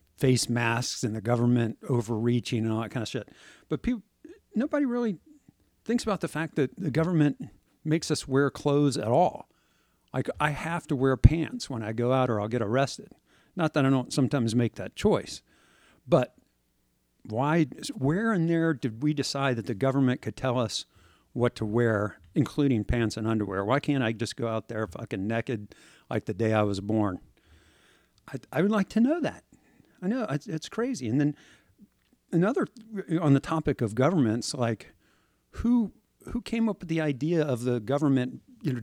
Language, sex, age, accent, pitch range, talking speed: English, male, 50-69, American, 115-150 Hz, 185 wpm